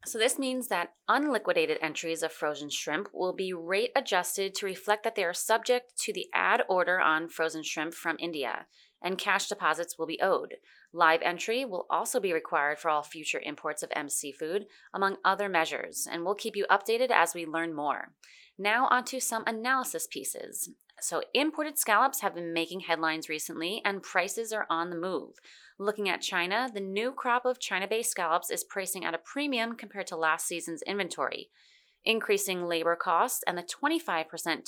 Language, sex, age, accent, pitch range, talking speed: English, female, 30-49, American, 165-225 Hz, 180 wpm